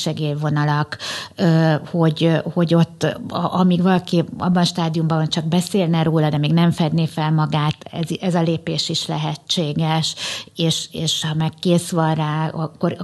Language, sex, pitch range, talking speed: Hungarian, female, 155-175 Hz, 150 wpm